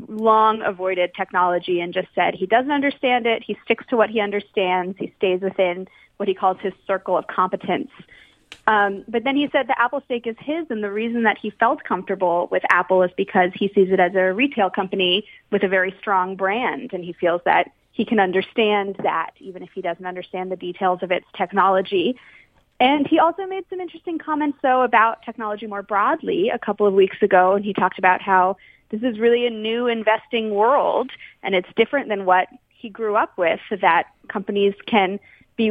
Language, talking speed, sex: English, 200 wpm, female